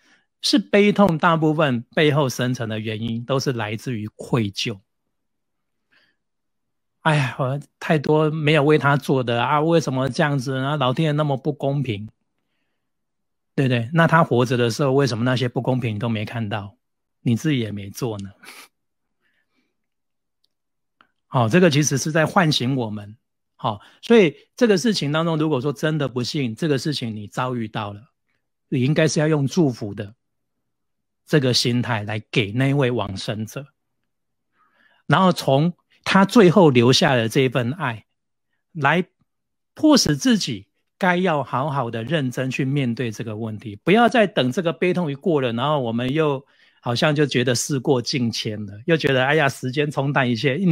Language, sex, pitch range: Chinese, male, 120-160 Hz